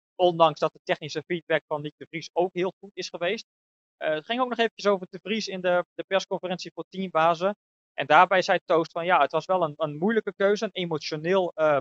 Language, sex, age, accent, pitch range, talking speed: Dutch, male, 20-39, Dutch, 160-195 Hz, 230 wpm